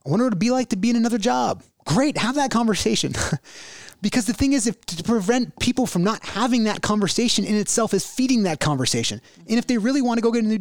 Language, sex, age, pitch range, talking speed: English, male, 30-49, 150-225 Hz, 250 wpm